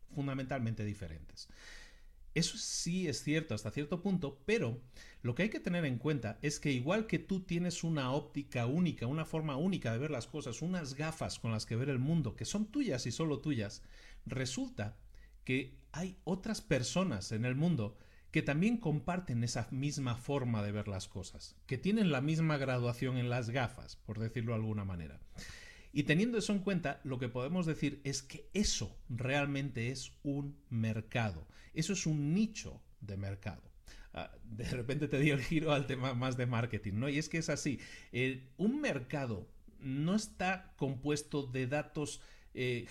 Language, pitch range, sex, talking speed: Spanish, 120-155 Hz, male, 175 wpm